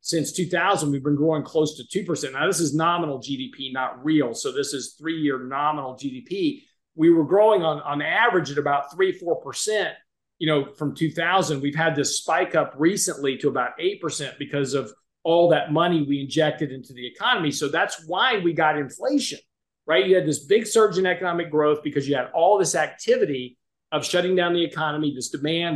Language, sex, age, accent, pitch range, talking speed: English, male, 40-59, American, 145-175 Hz, 190 wpm